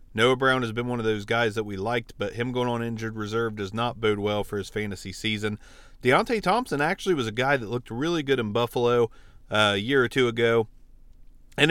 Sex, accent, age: male, American, 30-49